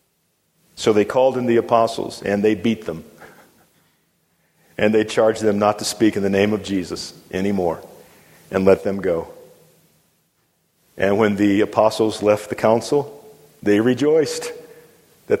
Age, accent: 50-69, American